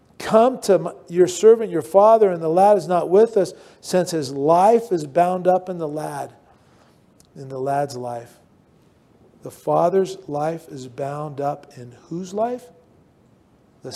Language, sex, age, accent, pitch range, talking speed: English, male, 40-59, American, 145-195 Hz, 155 wpm